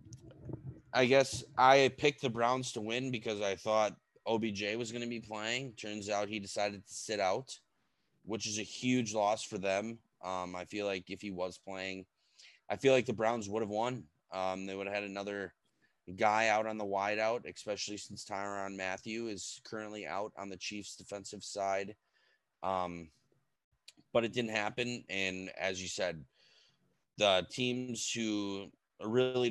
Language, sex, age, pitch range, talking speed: English, male, 20-39, 95-110 Hz, 170 wpm